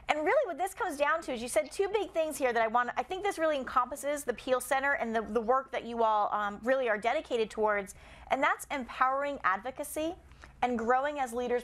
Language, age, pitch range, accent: English, 30-49, 225-295 Hz, American